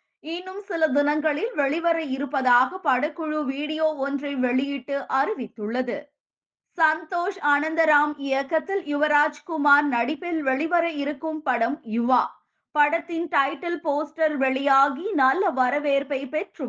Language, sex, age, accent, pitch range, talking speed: Tamil, female, 20-39, native, 270-315 Hz, 95 wpm